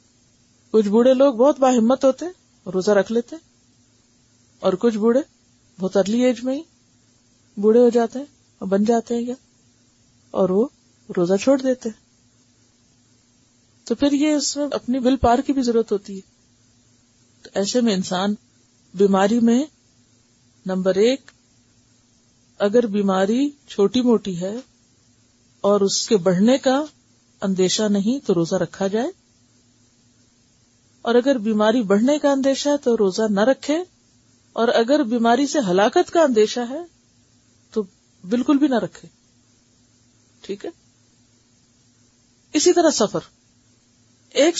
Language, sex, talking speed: Urdu, female, 130 wpm